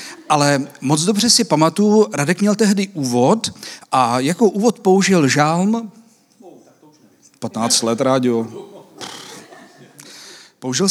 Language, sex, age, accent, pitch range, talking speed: Czech, male, 40-59, native, 140-175 Hz, 100 wpm